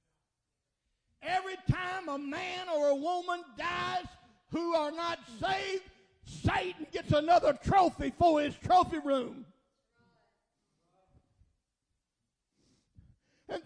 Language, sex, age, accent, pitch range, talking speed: English, male, 60-79, American, 280-355 Hz, 90 wpm